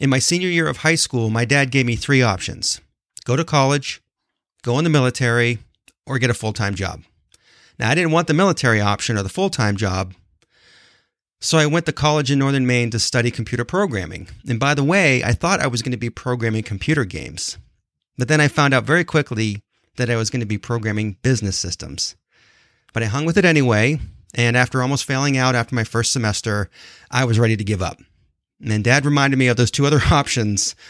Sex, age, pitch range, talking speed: male, 30-49, 110-140 Hz, 210 wpm